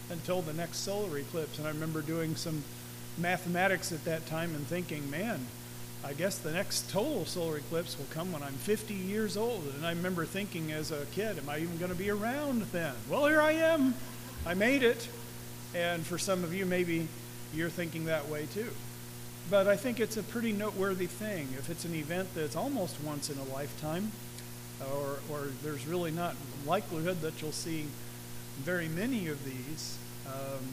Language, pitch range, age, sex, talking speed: English, 125-180 Hz, 40-59, male, 185 wpm